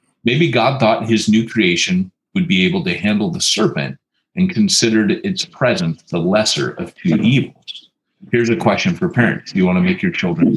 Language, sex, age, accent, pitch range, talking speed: English, male, 30-49, American, 110-185 Hz, 195 wpm